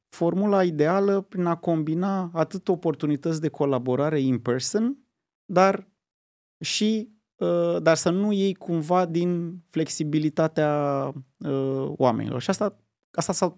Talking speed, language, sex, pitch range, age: 110 wpm, Romanian, male, 120-165 Hz, 30-49